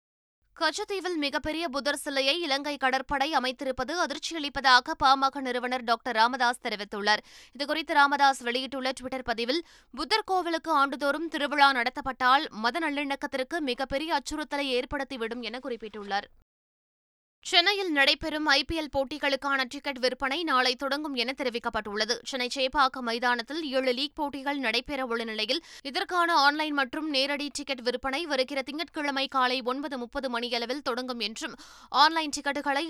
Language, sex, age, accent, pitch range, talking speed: Tamil, female, 20-39, native, 250-295 Hz, 115 wpm